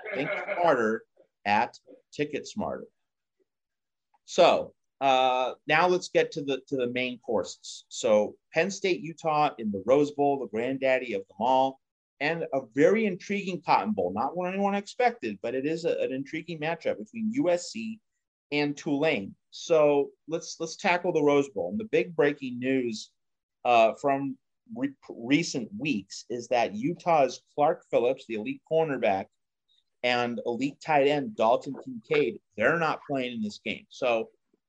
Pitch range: 120-175 Hz